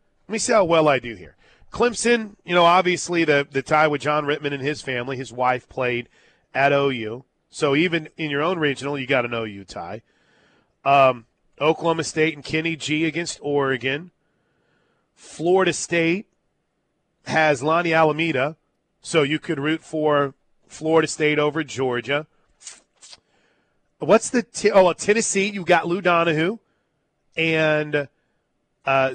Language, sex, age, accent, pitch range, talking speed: English, male, 30-49, American, 145-185 Hz, 145 wpm